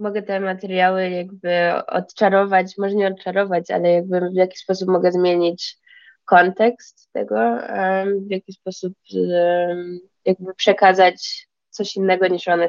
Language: Polish